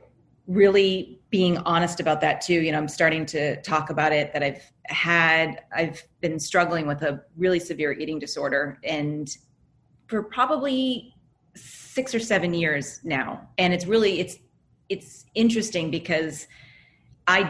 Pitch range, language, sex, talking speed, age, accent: 150-180 Hz, English, female, 145 wpm, 30-49, American